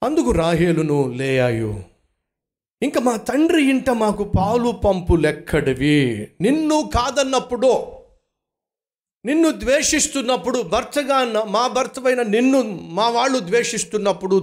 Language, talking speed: Telugu, 95 wpm